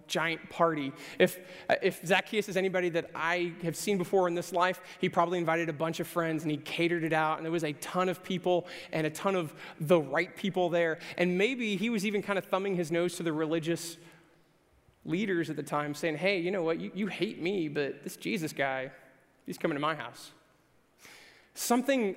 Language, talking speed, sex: English, 210 wpm, male